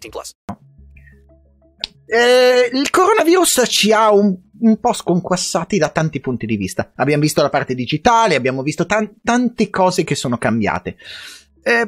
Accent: native